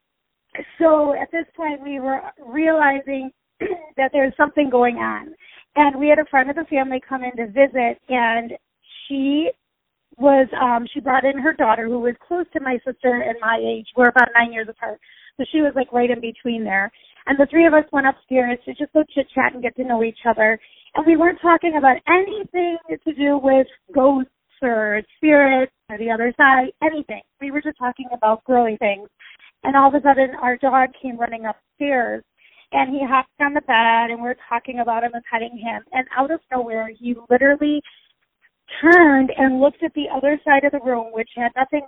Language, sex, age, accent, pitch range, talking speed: English, female, 30-49, American, 240-290 Hz, 195 wpm